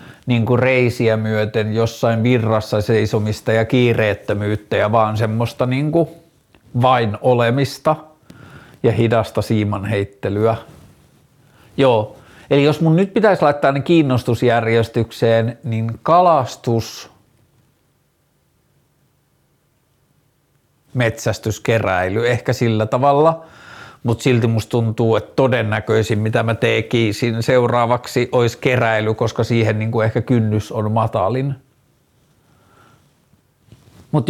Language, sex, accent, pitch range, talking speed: Finnish, male, native, 110-130 Hz, 95 wpm